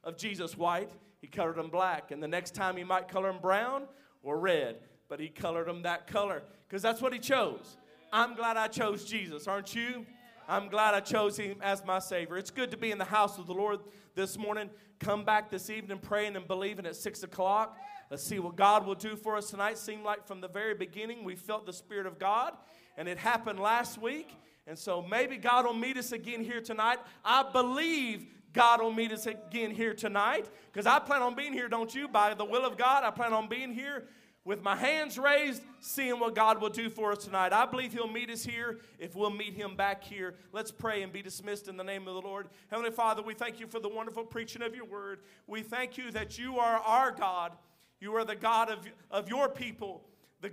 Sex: male